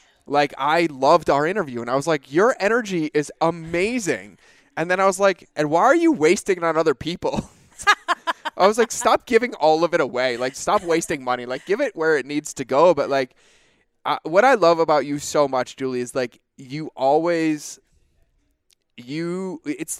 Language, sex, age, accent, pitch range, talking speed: English, male, 20-39, American, 135-195 Hz, 190 wpm